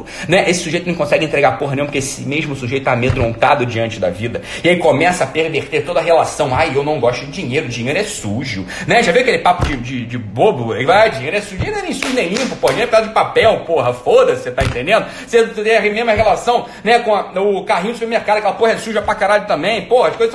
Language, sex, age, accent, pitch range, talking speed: Portuguese, male, 30-49, Brazilian, 170-235 Hz, 260 wpm